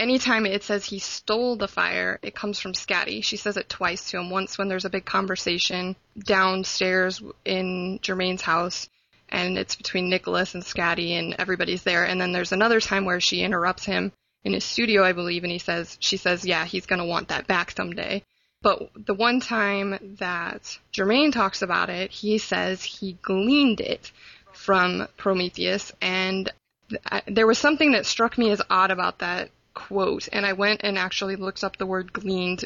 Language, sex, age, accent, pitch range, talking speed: English, female, 20-39, American, 185-210 Hz, 185 wpm